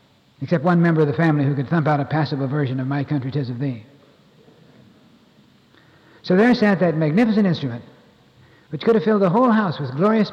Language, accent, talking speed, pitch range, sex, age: English, American, 200 wpm, 130-170 Hz, male, 60-79